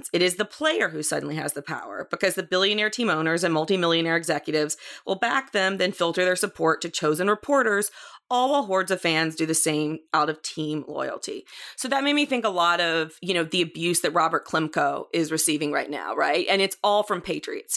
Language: English